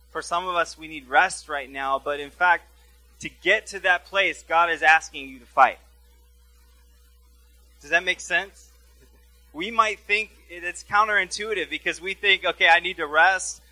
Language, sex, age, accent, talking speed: English, male, 20-39, American, 175 wpm